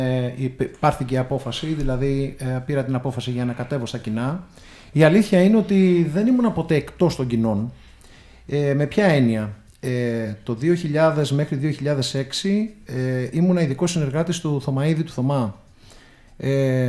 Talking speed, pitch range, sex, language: 140 wpm, 125-170 Hz, male, Greek